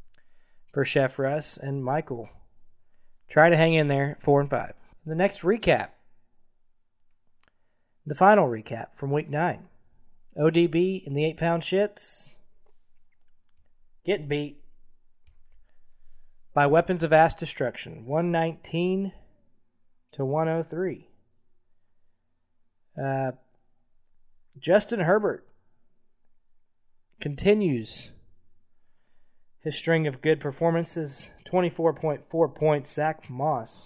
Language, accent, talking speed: English, American, 90 wpm